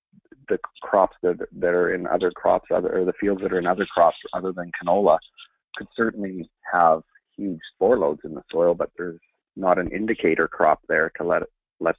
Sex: male